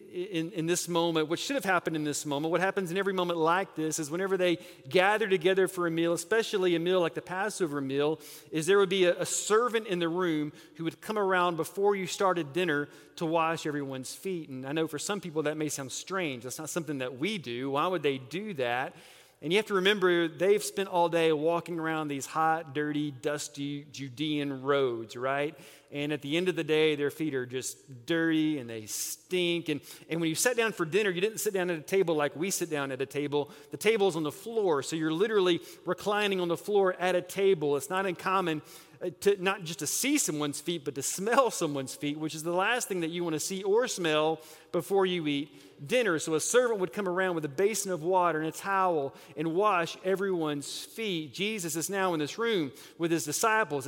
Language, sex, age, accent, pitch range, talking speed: English, male, 40-59, American, 145-185 Hz, 225 wpm